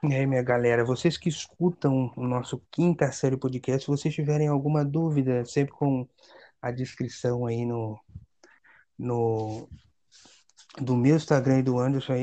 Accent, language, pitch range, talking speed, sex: Brazilian, Portuguese, 120-145 Hz, 135 wpm, male